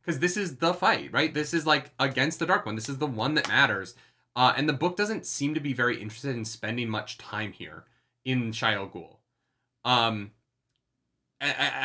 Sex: male